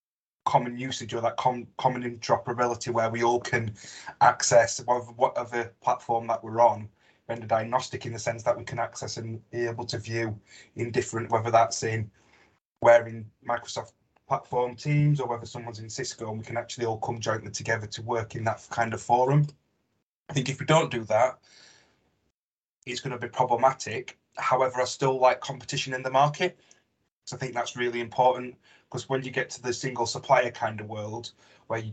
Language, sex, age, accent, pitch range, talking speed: English, male, 20-39, British, 115-125 Hz, 190 wpm